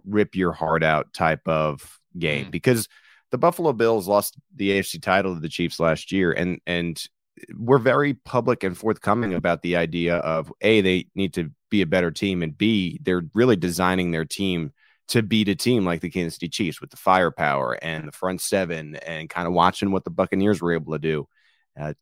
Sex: male